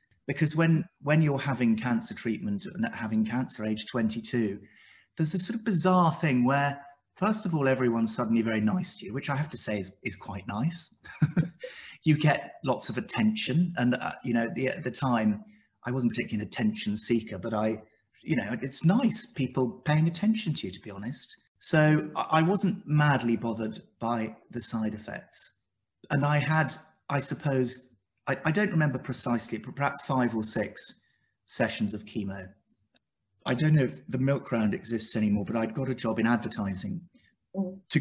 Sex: male